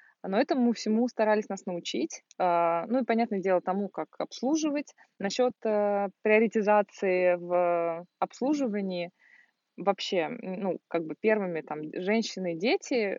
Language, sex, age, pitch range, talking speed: Russian, female, 20-39, 180-225 Hz, 120 wpm